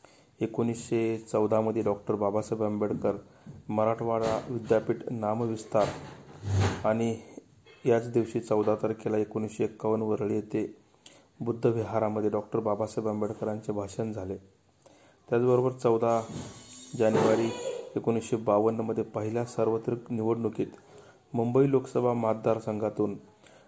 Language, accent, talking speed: Marathi, native, 85 wpm